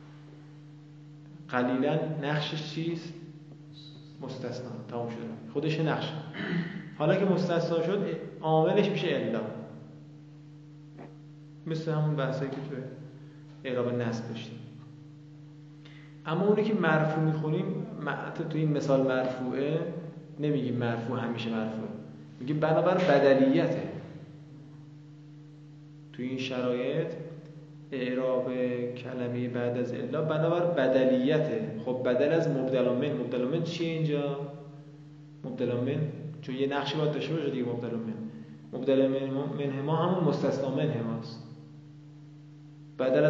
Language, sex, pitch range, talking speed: Persian, male, 130-155 Hz, 105 wpm